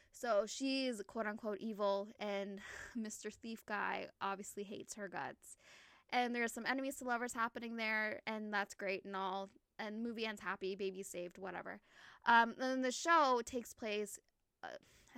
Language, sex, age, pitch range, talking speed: English, female, 10-29, 195-230 Hz, 160 wpm